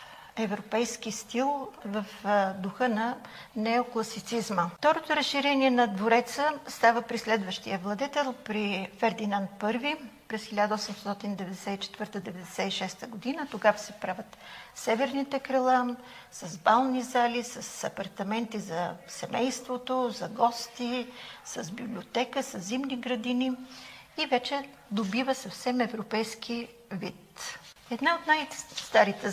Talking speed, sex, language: 100 wpm, female, Bulgarian